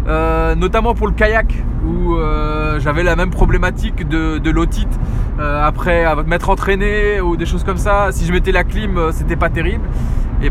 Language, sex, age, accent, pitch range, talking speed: French, male, 20-39, French, 150-205 Hz, 185 wpm